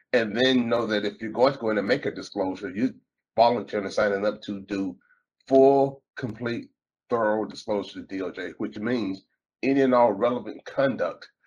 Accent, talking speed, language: American, 160 wpm, English